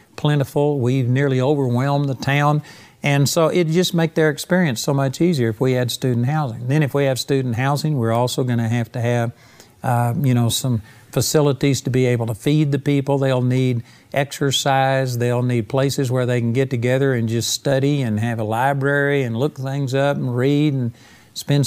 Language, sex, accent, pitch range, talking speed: English, male, American, 125-150 Hz, 200 wpm